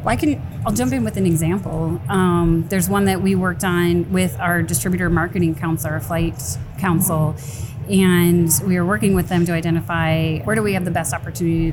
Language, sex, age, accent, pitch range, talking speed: English, female, 30-49, American, 155-175 Hz, 200 wpm